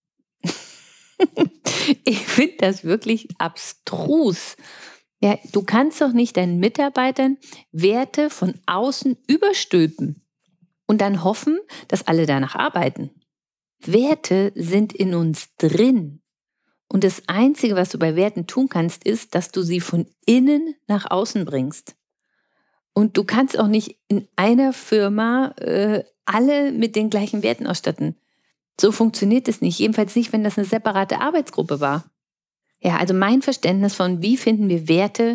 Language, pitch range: German, 175-240 Hz